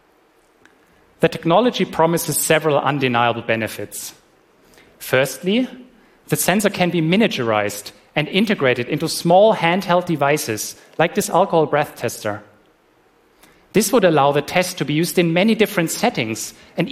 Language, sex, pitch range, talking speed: French, male, 125-175 Hz, 130 wpm